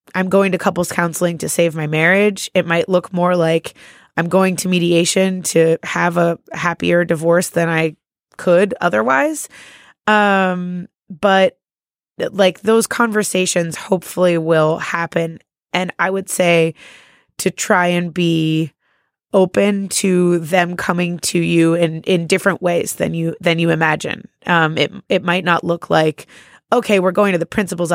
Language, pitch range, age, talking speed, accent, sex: English, 170-195 Hz, 20-39, 150 wpm, American, female